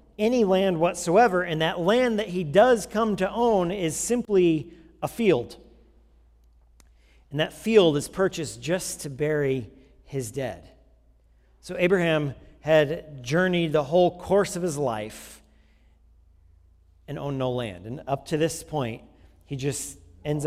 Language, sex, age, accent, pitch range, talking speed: English, male, 40-59, American, 125-155 Hz, 140 wpm